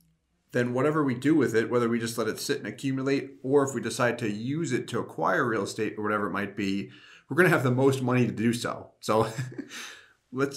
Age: 40-59